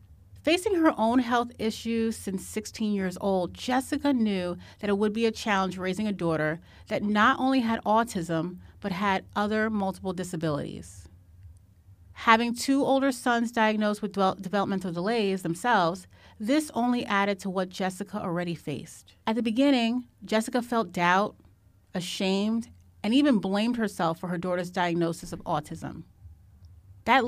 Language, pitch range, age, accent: English, 170-225 Hz, 30-49, American